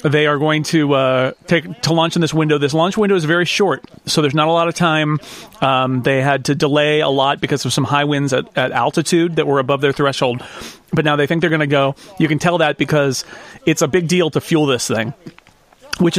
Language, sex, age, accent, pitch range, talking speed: English, male, 40-59, American, 135-165 Hz, 245 wpm